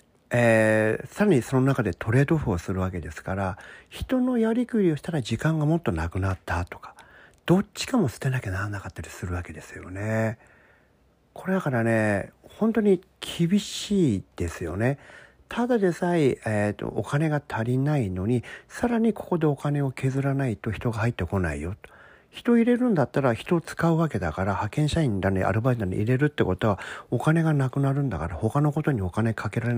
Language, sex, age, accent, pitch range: Japanese, male, 50-69, native, 110-175 Hz